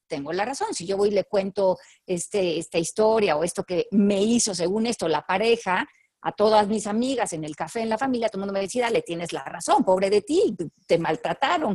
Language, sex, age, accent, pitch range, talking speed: Spanish, female, 40-59, Mexican, 185-240 Hz, 230 wpm